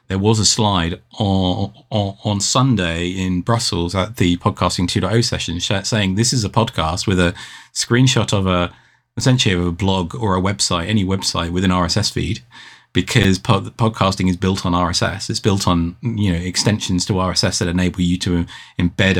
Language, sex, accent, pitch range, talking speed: English, male, British, 90-115 Hz, 180 wpm